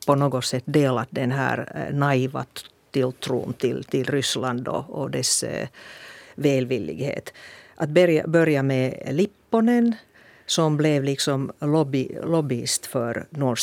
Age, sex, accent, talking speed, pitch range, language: 50-69, female, Finnish, 120 wpm, 135-175 Hz, Swedish